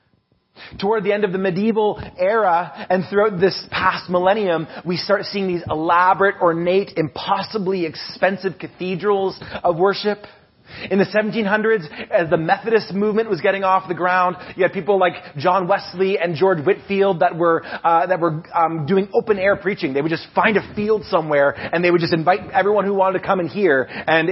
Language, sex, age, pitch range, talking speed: English, male, 30-49, 160-200 Hz, 185 wpm